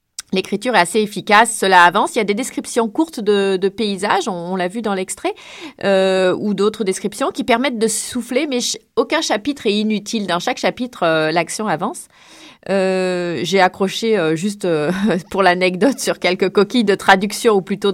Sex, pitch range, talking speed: female, 185-230 Hz, 180 wpm